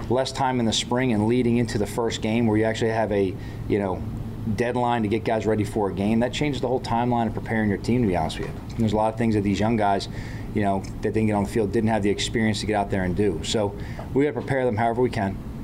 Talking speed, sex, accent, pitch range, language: 290 wpm, male, American, 105-115 Hz, English